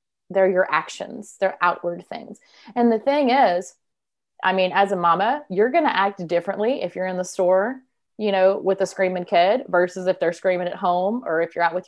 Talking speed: 210 wpm